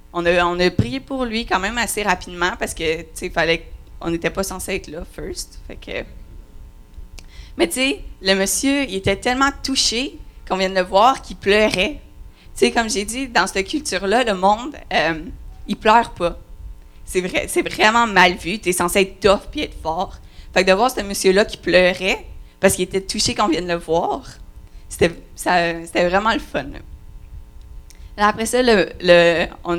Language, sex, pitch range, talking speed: French, female, 180-250 Hz, 180 wpm